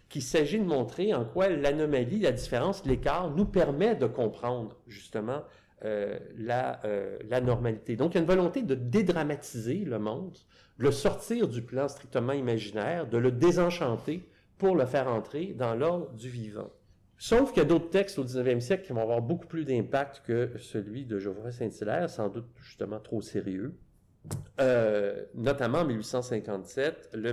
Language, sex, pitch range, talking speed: French, male, 110-145 Hz, 170 wpm